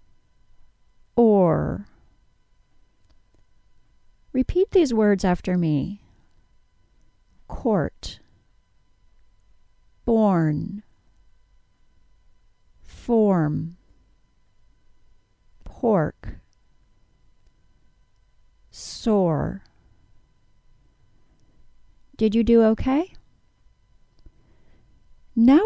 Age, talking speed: 40-59, 35 wpm